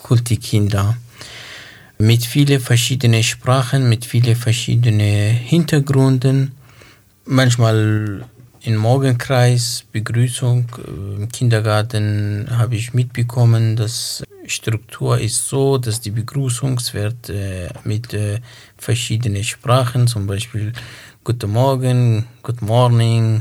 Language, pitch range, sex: English, 110-125 Hz, male